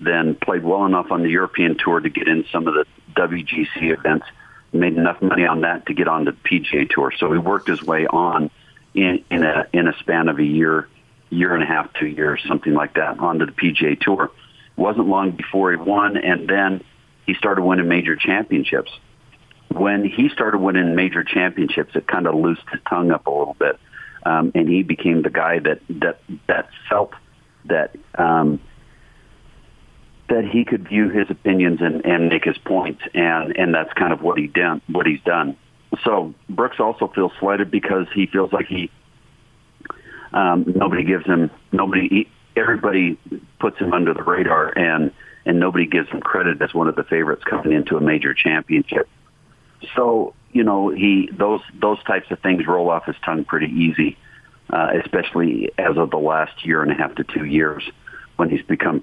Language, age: English, 50-69